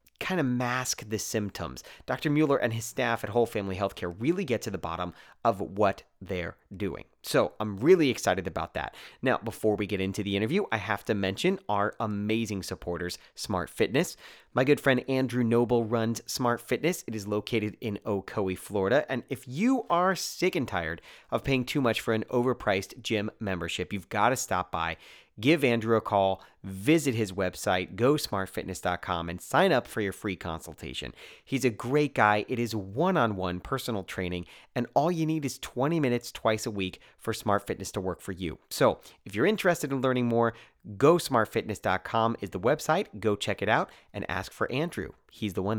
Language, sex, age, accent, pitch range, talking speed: English, male, 30-49, American, 100-130 Hz, 185 wpm